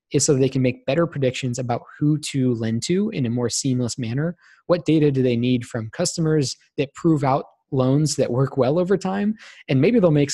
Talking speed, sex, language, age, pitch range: 215 wpm, male, English, 20-39, 125-160 Hz